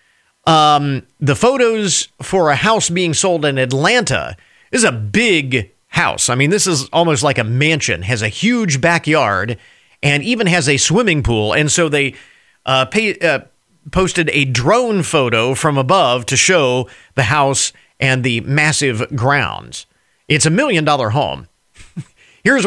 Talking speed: 150 wpm